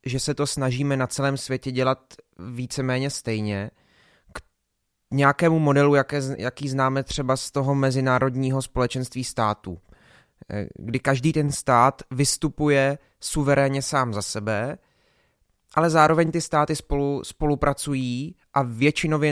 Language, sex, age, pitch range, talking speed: Czech, male, 20-39, 115-145 Hz, 120 wpm